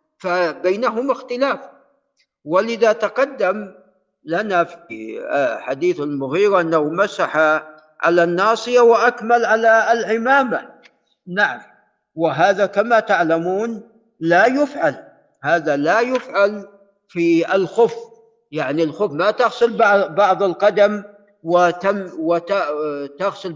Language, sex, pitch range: Arabic, male, 170-230 Hz